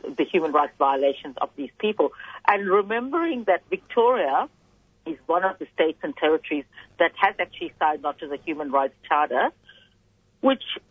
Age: 50-69